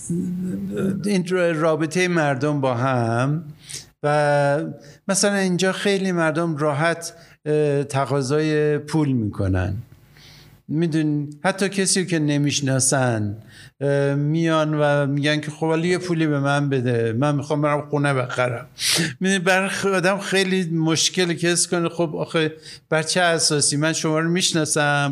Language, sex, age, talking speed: Persian, male, 60-79, 115 wpm